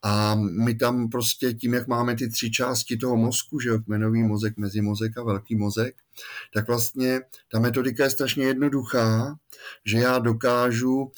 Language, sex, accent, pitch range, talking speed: Czech, male, native, 110-130 Hz, 160 wpm